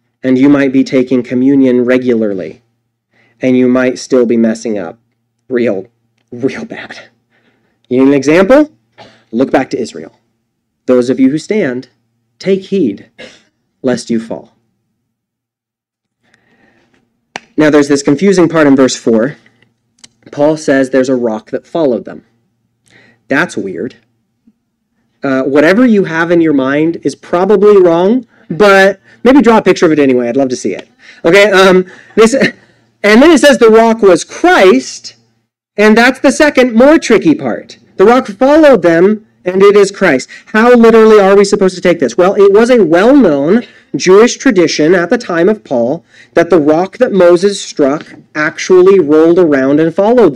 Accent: American